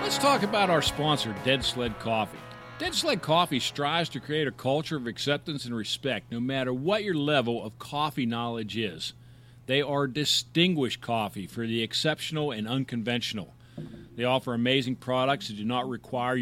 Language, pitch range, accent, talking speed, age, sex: English, 120-160 Hz, American, 170 wpm, 50-69, male